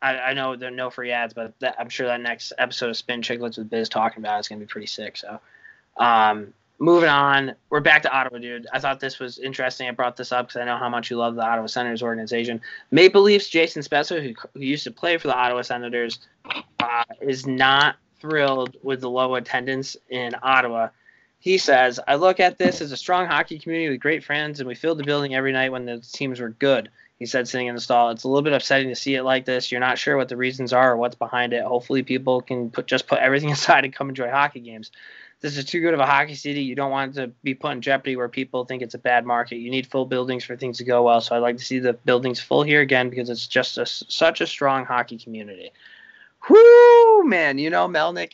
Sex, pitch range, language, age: male, 120-140 Hz, English, 20-39